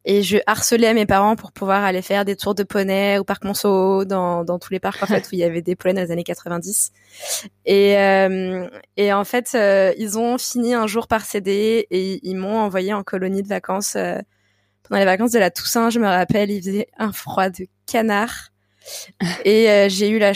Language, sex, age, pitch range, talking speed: French, female, 20-39, 180-210 Hz, 225 wpm